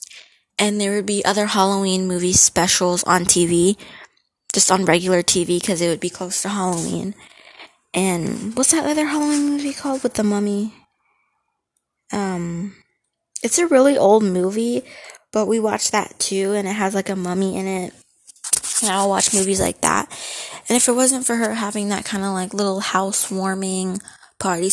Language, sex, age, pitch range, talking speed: English, female, 20-39, 185-215 Hz, 170 wpm